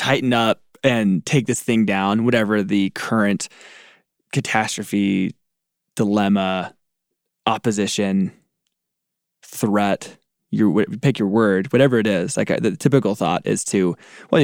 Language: English